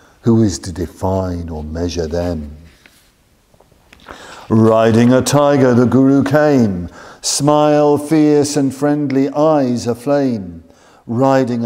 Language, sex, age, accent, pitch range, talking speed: English, male, 50-69, British, 90-120 Hz, 105 wpm